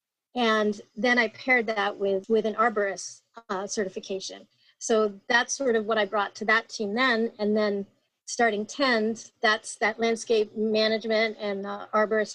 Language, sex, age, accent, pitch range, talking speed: English, female, 30-49, American, 200-230 Hz, 160 wpm